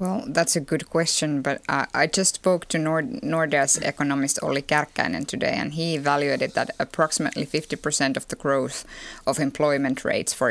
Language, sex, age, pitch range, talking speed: Finnish, female, 10-29, 145-175 Hz, 175 wpm